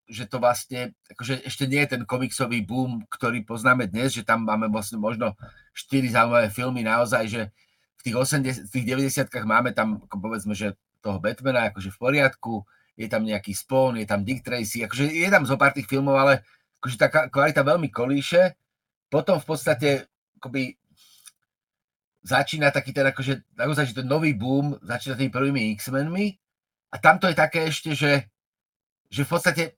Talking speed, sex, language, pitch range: 170 wpm, male, Slovak, 115-140 Hz